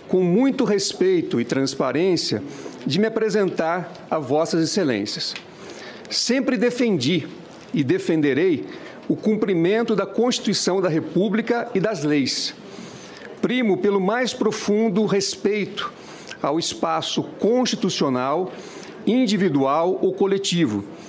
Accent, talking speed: Brazilian, 100 wpm